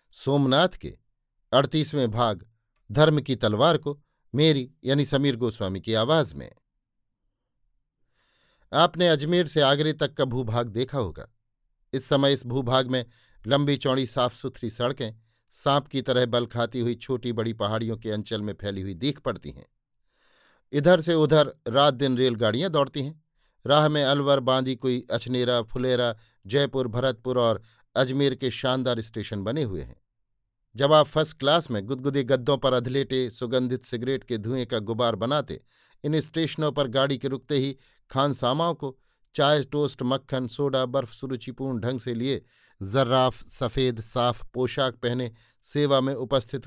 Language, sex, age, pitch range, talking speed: Hindi, male, 50-69, 120-140 Hz, 150 wpm